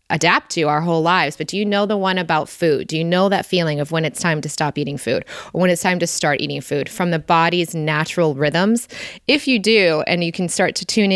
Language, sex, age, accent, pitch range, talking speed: English, female, 20-39, American, 160-195 Hz, 260 wpm